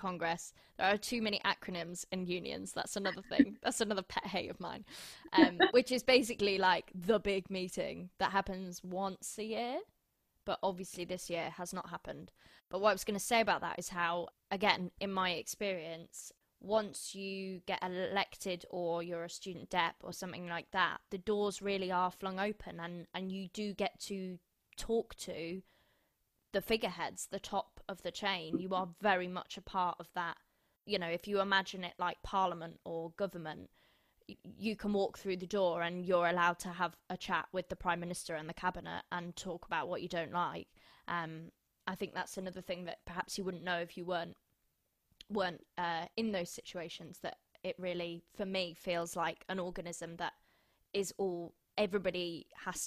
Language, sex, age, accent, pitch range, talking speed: English, female, 20-39, British, 175-195 Hz, 185 wpm